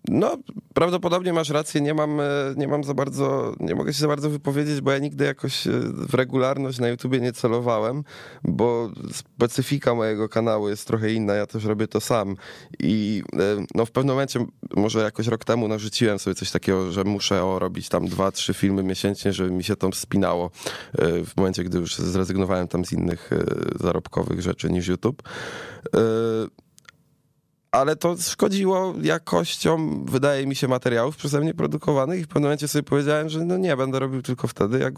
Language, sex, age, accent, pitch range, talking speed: Polish, male, 20-39, native, 100-135 Hz, 175 wpm